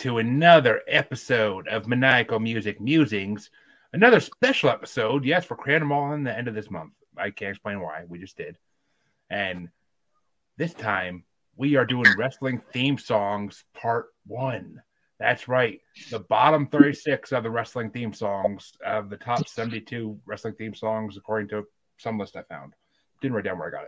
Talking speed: 165 wpm